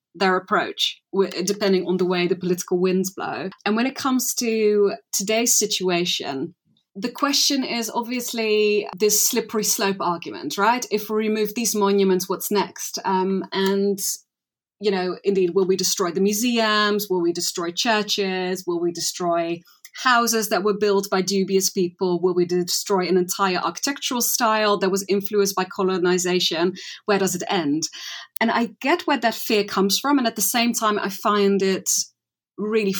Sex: female